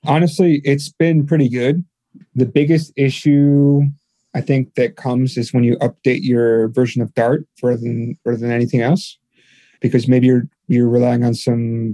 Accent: American